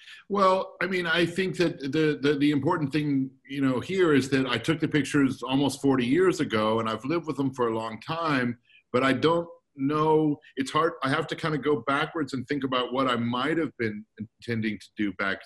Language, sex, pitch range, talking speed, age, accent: English, male, 120-150 Hz, 225 wpm, 50-69, American